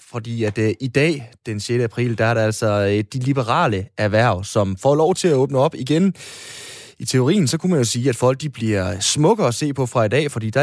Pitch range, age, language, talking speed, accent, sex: 110-140 Hz, 20-39, Danish, 235 wpm, native, male